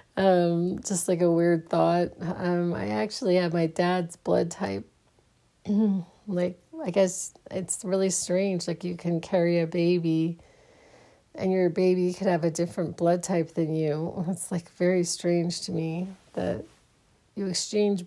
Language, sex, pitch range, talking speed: English, female, 170-200 Hz, 155 wpm